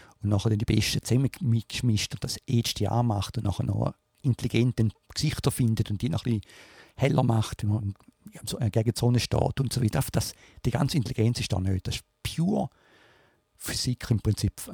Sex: male